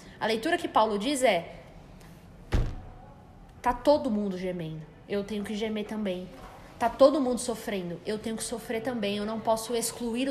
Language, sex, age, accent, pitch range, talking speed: Portuguese, female, 20-39, Brazilian, 215-270 Hz, 165 wpm